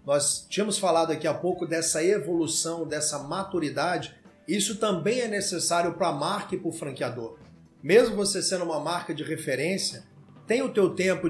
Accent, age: Brazilian, 40-59